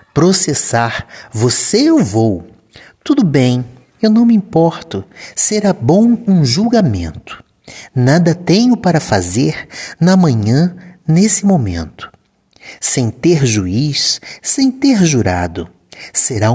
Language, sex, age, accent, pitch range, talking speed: Portuguese, male, 50-69, Brazilian, 110-185 Hz, 105 wpm